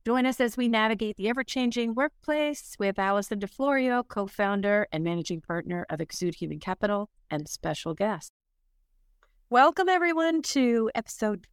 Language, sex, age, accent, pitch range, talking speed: English, female, 50-69, American, 170-220 Hz, 135 wpm